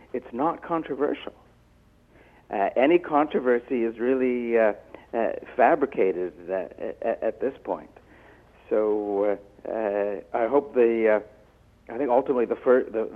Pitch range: 105-130 Hz